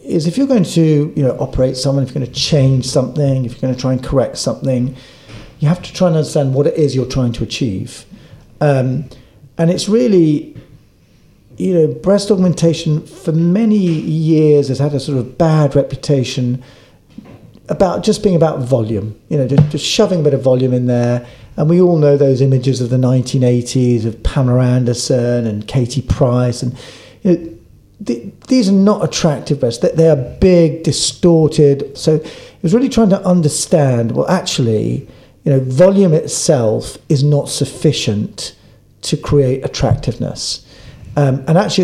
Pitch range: 130-165 Hz